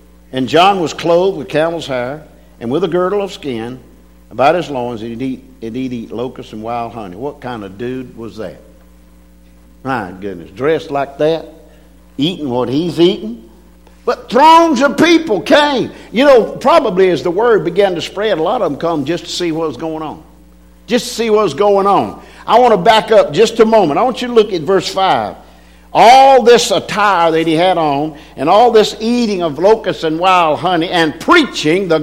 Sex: male